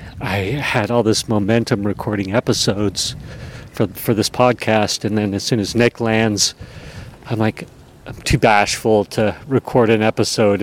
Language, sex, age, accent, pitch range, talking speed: English, male, 40-59, American, 105-130 Hz, 150 wpm